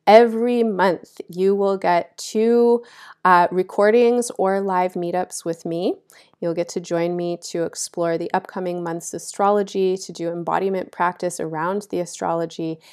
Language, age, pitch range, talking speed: English, 20-39, 165-190 Hz, 145 wpm